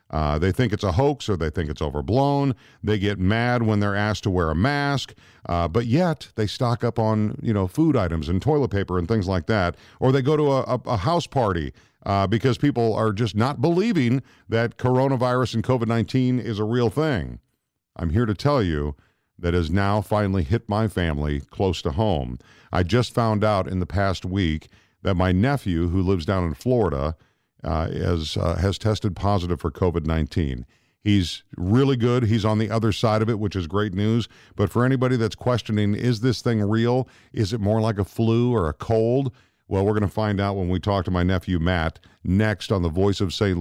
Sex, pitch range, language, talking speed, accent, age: male, 95-135 Hz, English, 210 wpm, American, 50-69